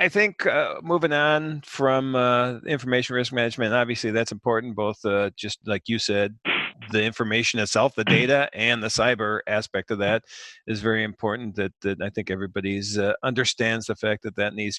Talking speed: 185 wpm